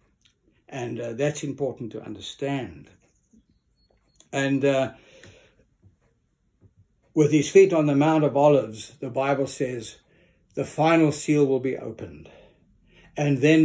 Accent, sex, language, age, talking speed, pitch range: South African, male, English, 60-79, 120 wpm, 125-160 Hz